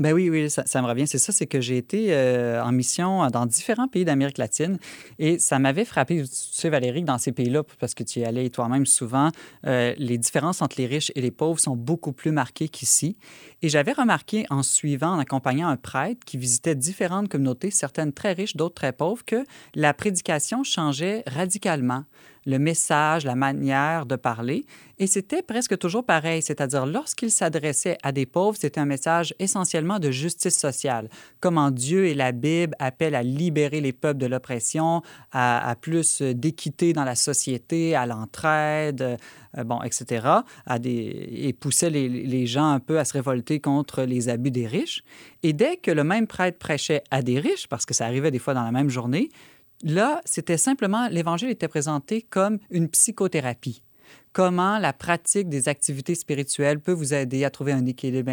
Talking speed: 190 wpm